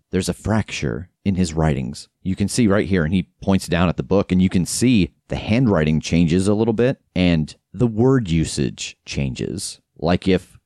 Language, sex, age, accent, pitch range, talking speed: English, male, 30-49, American, 85-105 Hz, 195 wpm